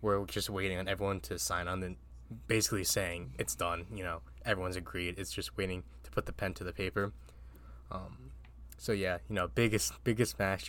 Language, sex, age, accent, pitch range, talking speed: English, male, 10-29, American, 85-100 Hz, 195 wpm